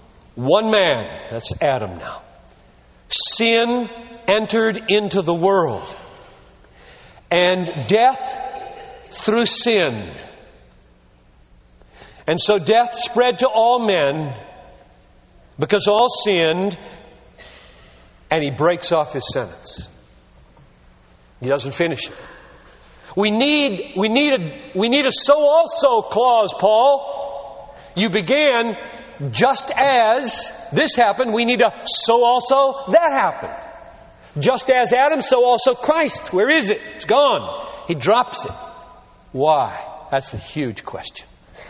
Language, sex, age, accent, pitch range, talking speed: English, male, 50-69, American, 155-255 Hz, 110 wpm